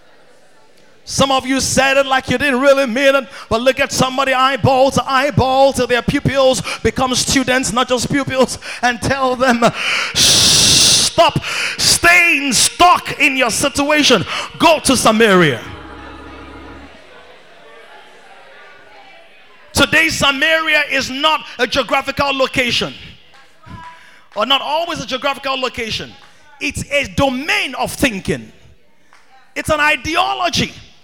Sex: male